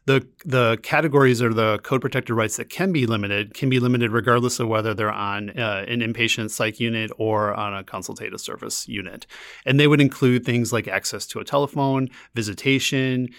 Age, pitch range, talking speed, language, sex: 30-49, 105-125 Hz, 185 wpm, English, male